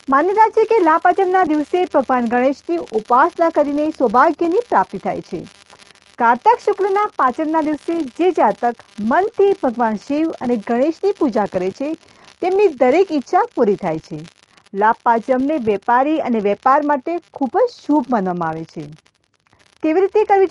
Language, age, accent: Gujarati, 40-59, native